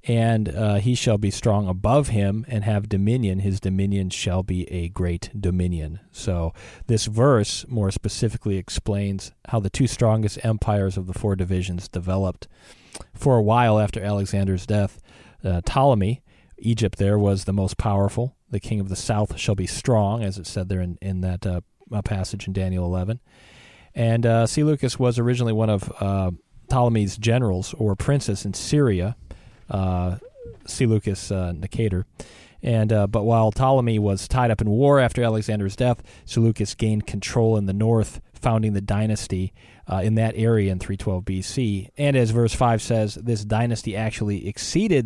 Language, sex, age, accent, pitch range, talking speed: English, male, 40-59, American, 95-115 Hz, 165 wpm